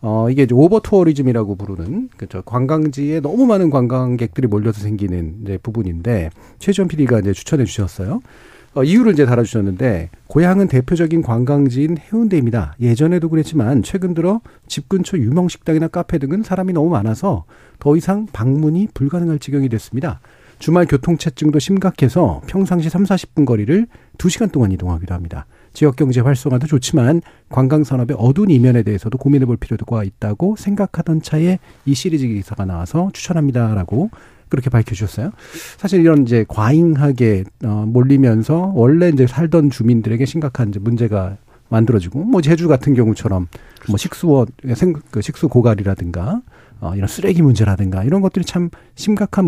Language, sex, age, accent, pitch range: Korean, male, 40-59, native, 110-165 Hz